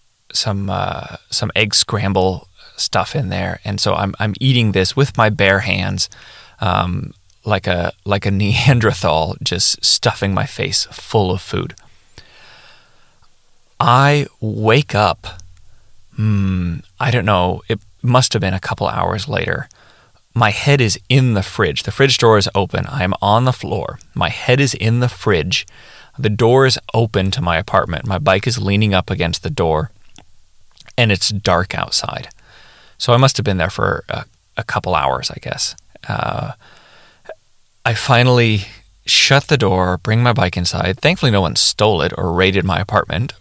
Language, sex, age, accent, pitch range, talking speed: English, male, 20-39, American, 95-115 Hz, 160 wpm